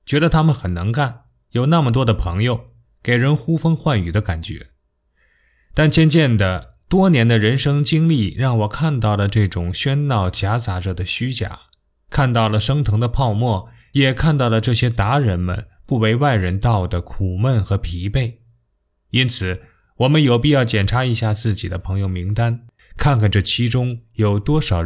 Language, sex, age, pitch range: Chinese, male, 20-39, 100-140 Hz